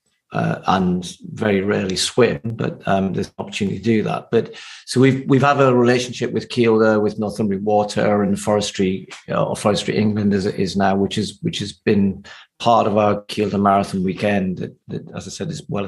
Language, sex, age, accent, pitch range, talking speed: English, male, 40-59, British, 105-115 Hz, 200 wpm